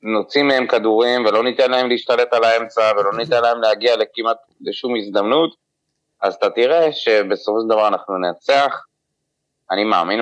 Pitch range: 100-130 Hz